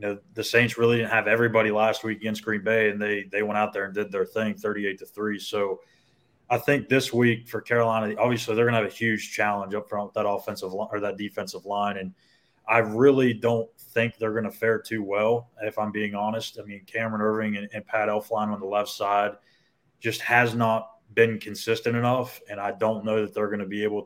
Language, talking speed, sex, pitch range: English, 225 wpm, male, 105-115 Hz